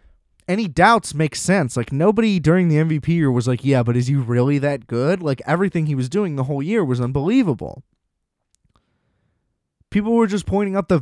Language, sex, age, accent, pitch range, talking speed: English, male, 20-39, American, 120-160 Hz, 190 wpm